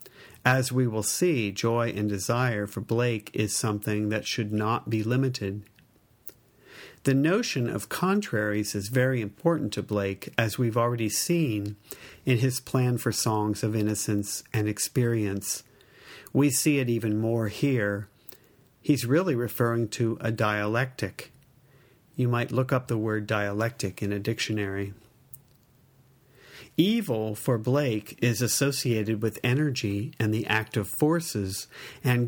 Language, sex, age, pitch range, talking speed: English, male, 50-69, 105-130 Hz, 135 wpm